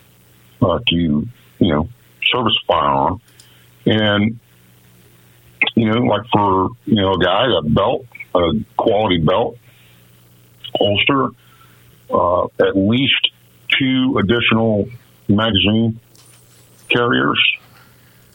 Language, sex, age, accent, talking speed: English, male, 50-69, American, 90 wpm